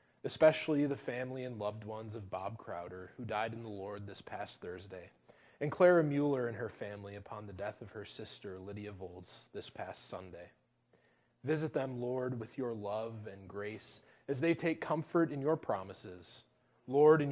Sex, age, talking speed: male, 20-39, 175 wpm